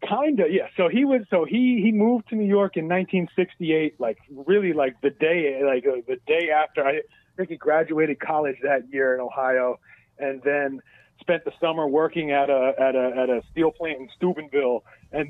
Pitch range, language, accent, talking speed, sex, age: 140-175 Hz, English, American, 195 wpm, male, 30-49